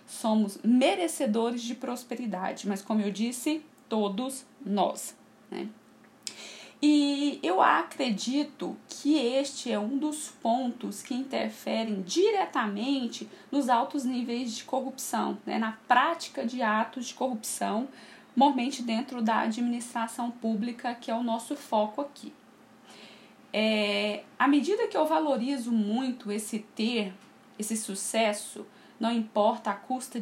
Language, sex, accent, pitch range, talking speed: Portuguese, female, Brazilian, 215-270 Hz, 120 wpm